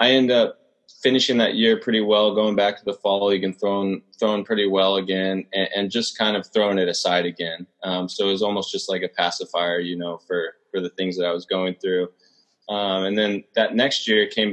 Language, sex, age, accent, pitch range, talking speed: English, male, 20-39, American, 90-100 Hz, 235 wpm